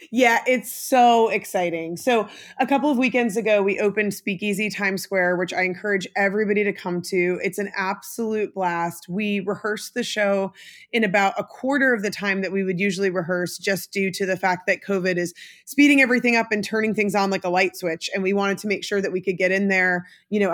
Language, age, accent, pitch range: English, 20-39, American, 185-215 Hz